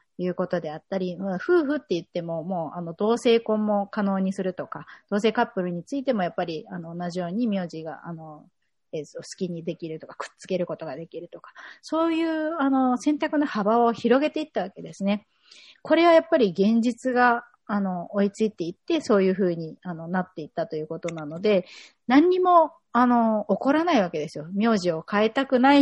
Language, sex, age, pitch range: Japanese, female, 30-49, 175-240 Hz